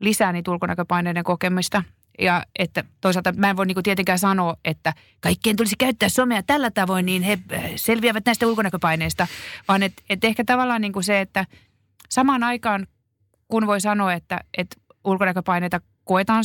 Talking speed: 155 wpm